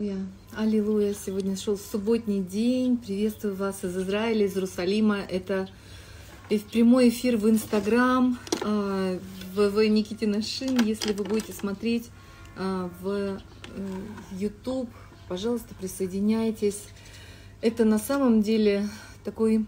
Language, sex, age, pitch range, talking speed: Russian, female, 30-49, 190-220 Hz, 105 wpm